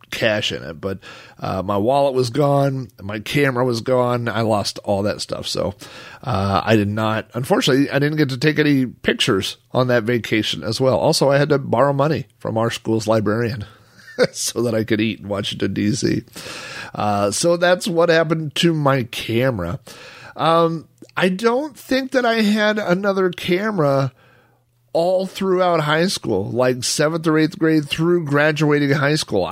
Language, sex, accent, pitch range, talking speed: English, male, American, 115-150 Hz, 175 wpm